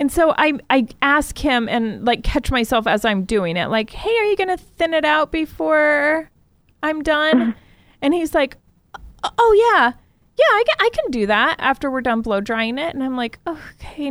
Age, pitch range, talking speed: 20-39, 215-300 Hz, 205 wpm